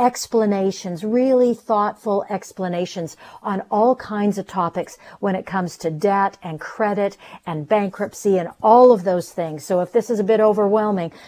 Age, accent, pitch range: 50-69, American, 180-225 Hz